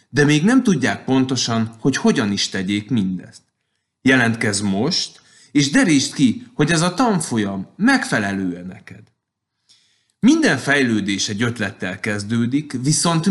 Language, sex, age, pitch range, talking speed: Hungarian, male, 30-49, 105-145 Hz, 120 wpm